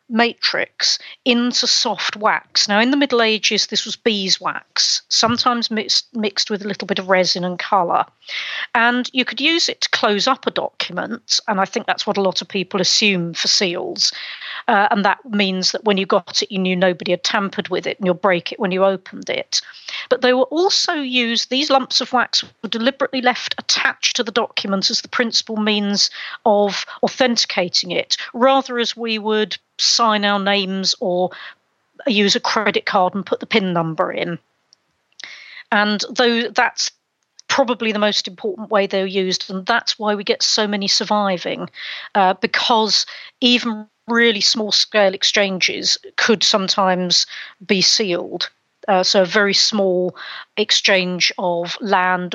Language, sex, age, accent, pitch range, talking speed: English, female, 40-59, British, 190-235 Hz, 165 wpm